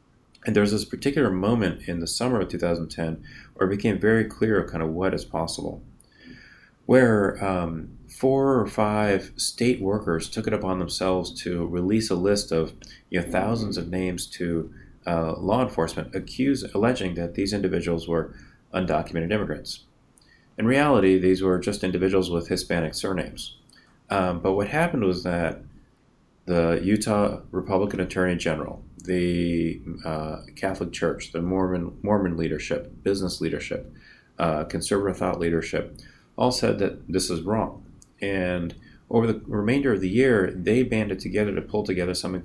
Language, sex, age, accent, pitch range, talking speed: English, male, 30-49, American, 85-100 Hz, 155 wpm